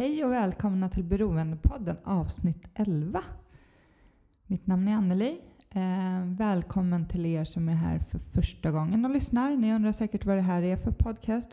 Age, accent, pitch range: 20-39, native, 170-205 Hz